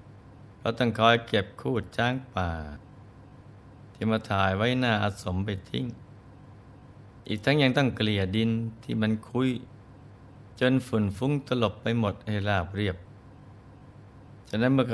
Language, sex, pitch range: Thai, male, 100-125 Hz